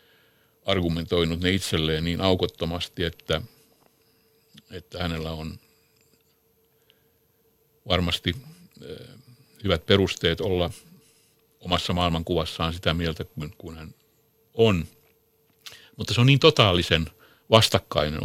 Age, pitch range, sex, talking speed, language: 60-79, 80-115 Hz, male, 90 wpm, Finnish